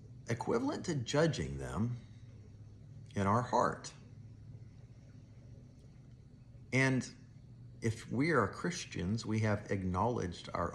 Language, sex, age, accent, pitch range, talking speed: English, male, 50-69, American, 115-125 Hz, 90 wpm